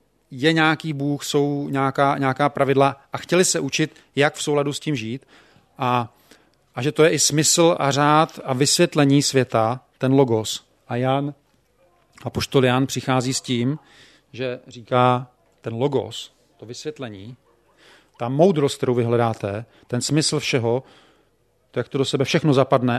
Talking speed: 155 wpm